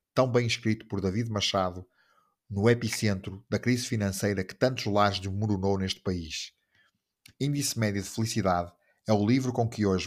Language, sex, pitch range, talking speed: Portuguese, male, 95-120 Hz, 160 wpm